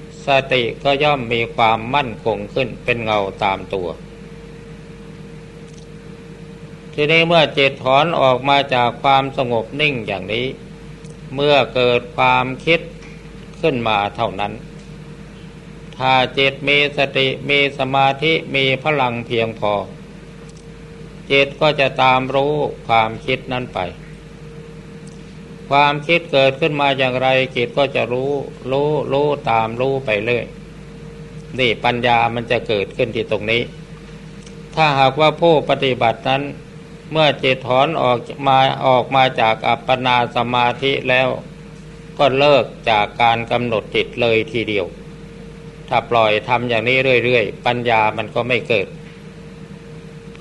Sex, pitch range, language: male, 125-155 Hz, Thai